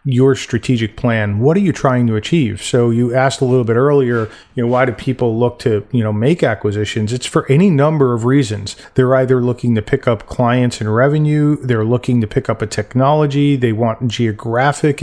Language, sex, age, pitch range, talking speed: English, male, 40-59, 120-150 Hz, 210 wpm